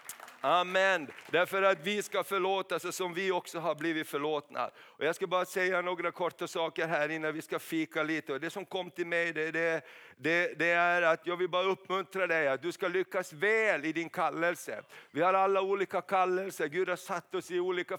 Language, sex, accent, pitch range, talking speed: Swedish, male, native, 165-190 Hz, 205 wpm